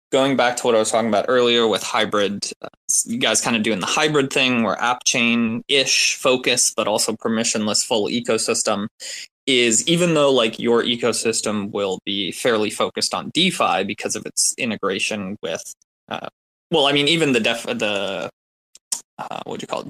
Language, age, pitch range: English, 20-39, 110-140 Hz